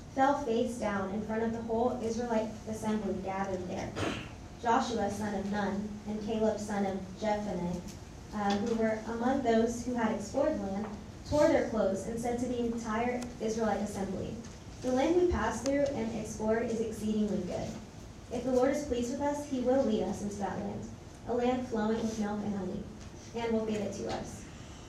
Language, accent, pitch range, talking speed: English, American, 205-245 Hz, 185 wpm